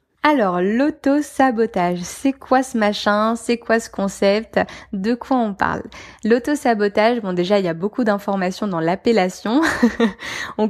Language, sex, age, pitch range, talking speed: French, female, 20-39, 190-230 Hz, 140 wpm